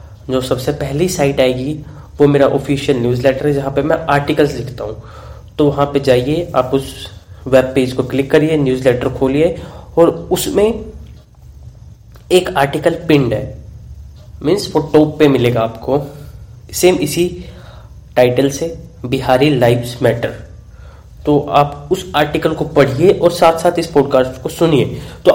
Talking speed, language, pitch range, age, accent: 145 wpm, Hindi, 125-160 Hz, 20-39, native